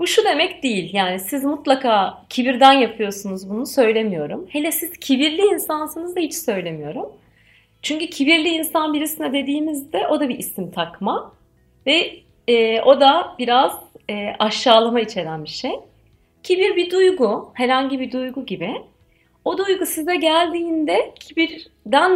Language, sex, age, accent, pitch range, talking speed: Turkish, female, 40-59, native, 205-330 Hz, 135 wpm